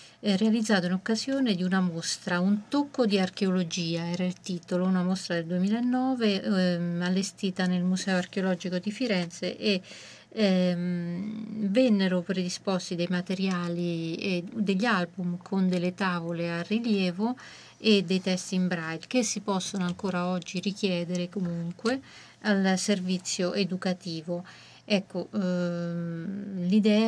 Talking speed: 125 wpm